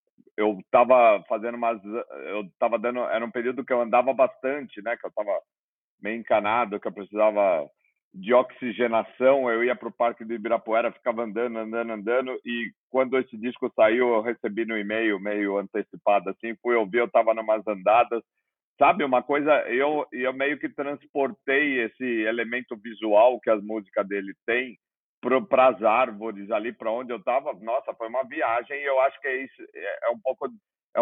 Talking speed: 180 wpm